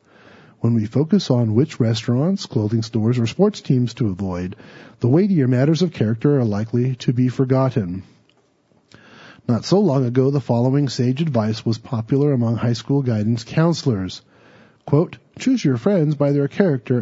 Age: 40-59